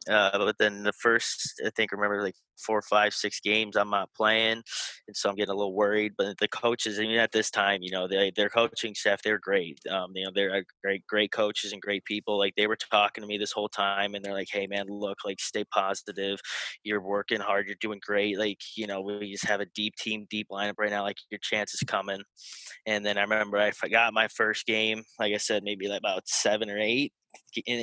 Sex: male